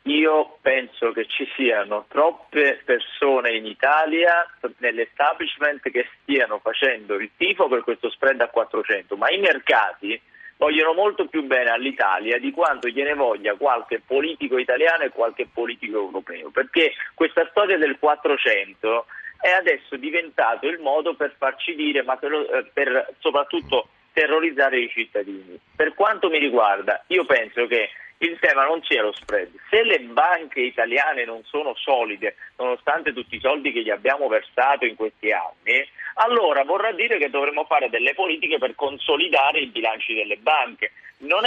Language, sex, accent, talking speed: Italian, male, native, 155 wpm